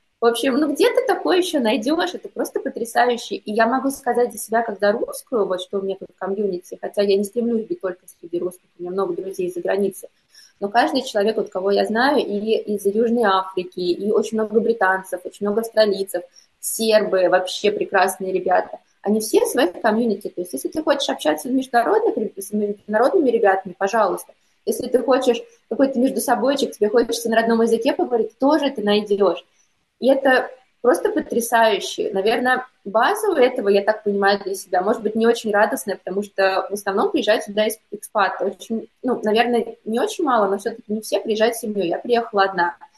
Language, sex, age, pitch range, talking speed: Russian, female, 20-39, 200-260 Hz, 185 wpm